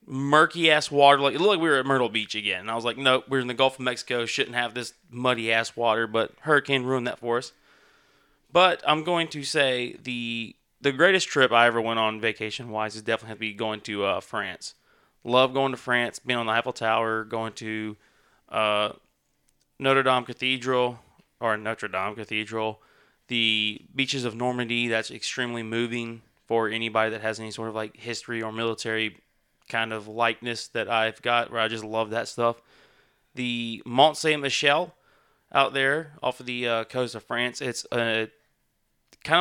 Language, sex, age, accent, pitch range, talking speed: English, male, 20-39, American, 115-135 Hz, 185 wpm